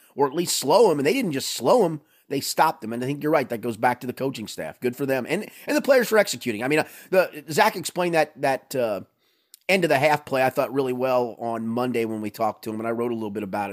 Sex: male